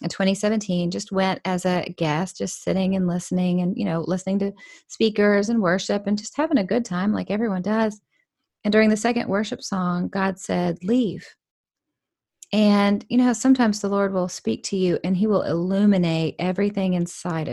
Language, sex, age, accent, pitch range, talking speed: English, female, 30-49, American, 175-215 Hz, 180 wpm